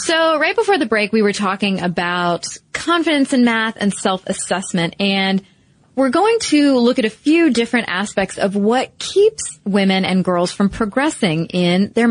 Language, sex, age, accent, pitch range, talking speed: English, female, 20-39, American, 180-250 Hz, 170 wpm